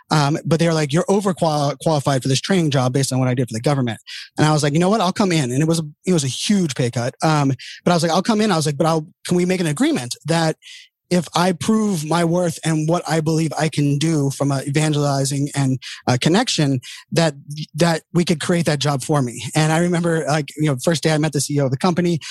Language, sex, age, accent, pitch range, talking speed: English, male, 20-39, American, 145-170 Hz, 275 wpm